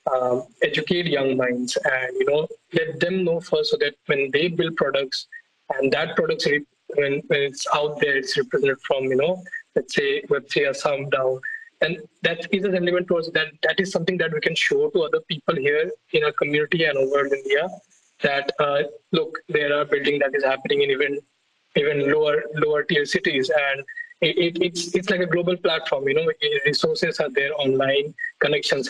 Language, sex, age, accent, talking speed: English, male, 20-39, Indian, 195 wpm